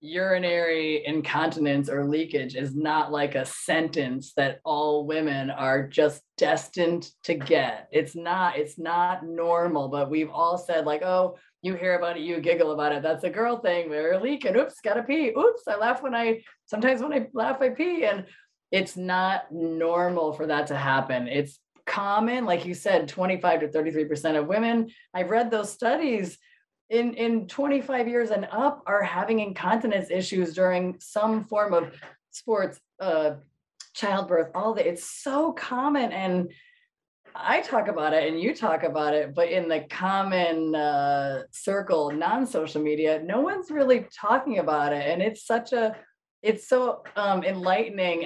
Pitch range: 155-215 Hz